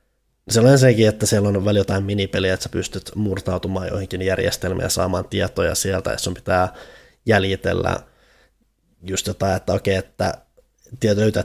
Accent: native